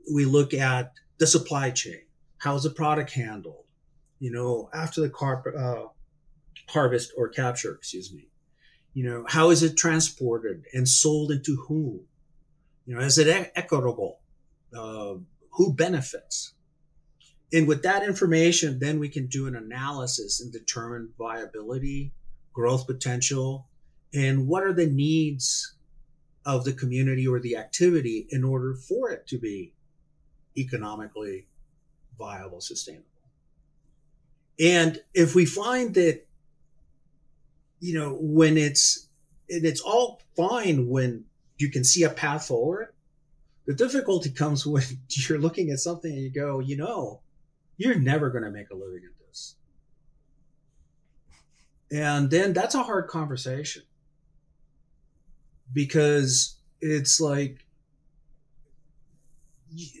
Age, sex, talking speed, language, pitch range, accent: 40-59, male, 125 wpm, English, 130-160 Hz, American